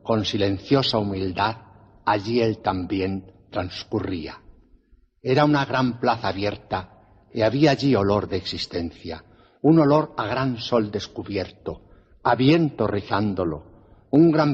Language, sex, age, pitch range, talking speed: Portuguese, male, 60-79, 100-130 Hz, 120 wpm